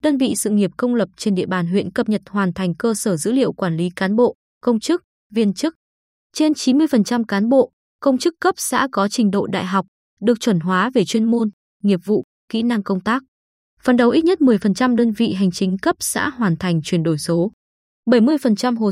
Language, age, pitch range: Vietnamese, 20-39, 195-250 Hz